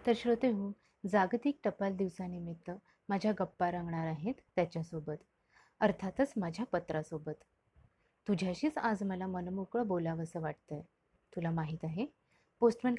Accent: native